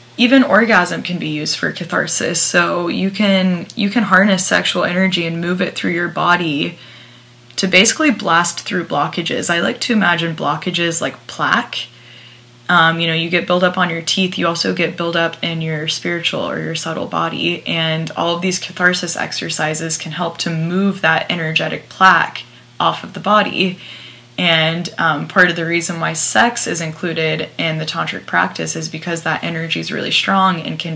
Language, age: English, 10-29